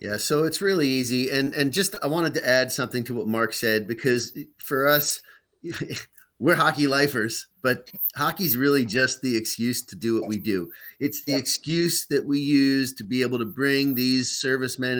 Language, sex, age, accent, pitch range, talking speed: English, male, 30-49, American, 120-145 Hz, 190 wpm